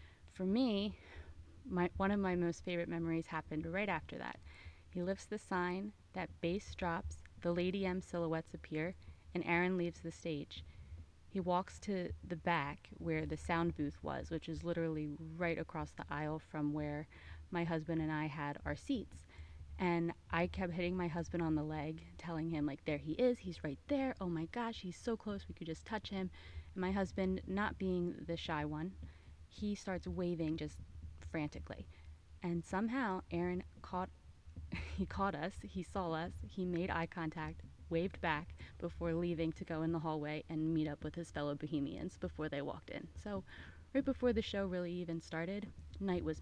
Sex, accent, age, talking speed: female, American, 30-49, 185 wpm